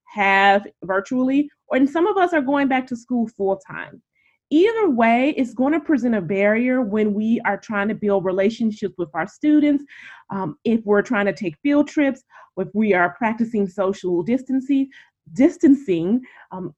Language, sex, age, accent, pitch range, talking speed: English, female, 20-39, American, 195-275 Hz, 165 wpm